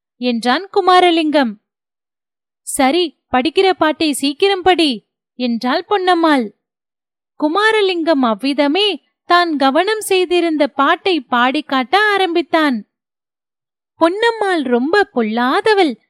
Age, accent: 30-49, native